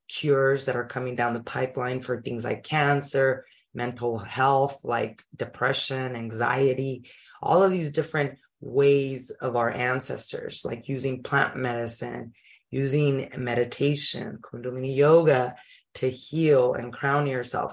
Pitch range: 120-140 Hz